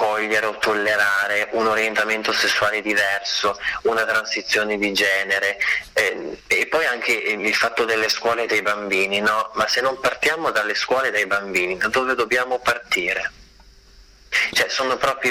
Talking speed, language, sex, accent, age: 150 wpm, Italian, male, native, 30-49